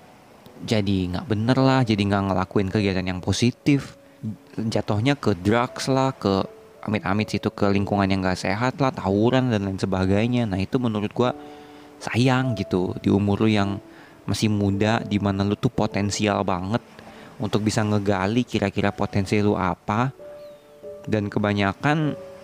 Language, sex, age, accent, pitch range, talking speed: Indonesian, male, 20-39, native, 100-130 Hz, 140 wpm